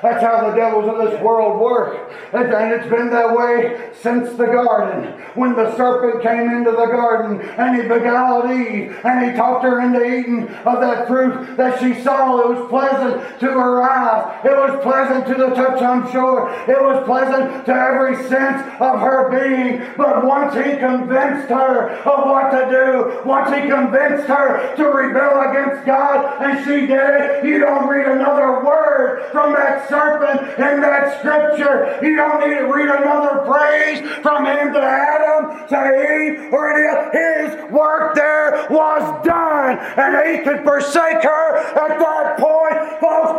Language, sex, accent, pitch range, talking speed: English, male, American, 255-315 Hz, 170 wpm